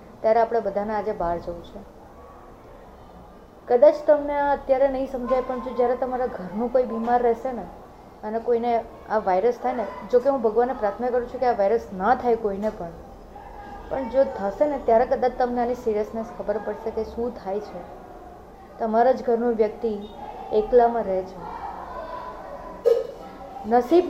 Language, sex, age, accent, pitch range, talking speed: Gujarati, female, 30-49, native, 220-270 Hz, 40 wpm